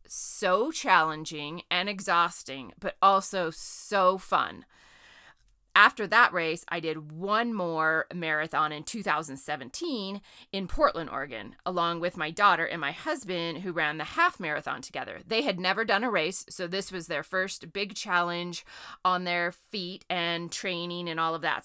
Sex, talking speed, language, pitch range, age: female, 155 wpm, English, 165-200 Hz, 30-49